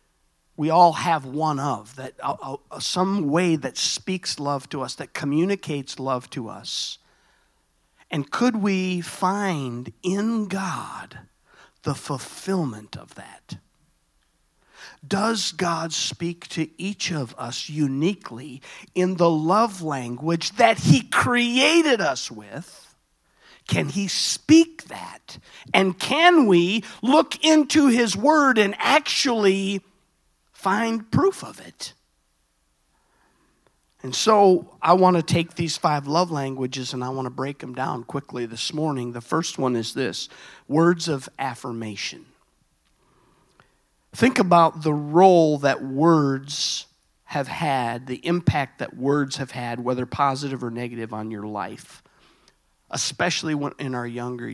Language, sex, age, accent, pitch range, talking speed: English, male, 50-69, American, 125-185 Hz, 130 wpm